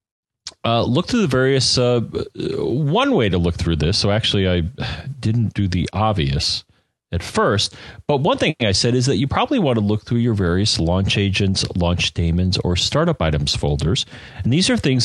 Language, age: English, 40-59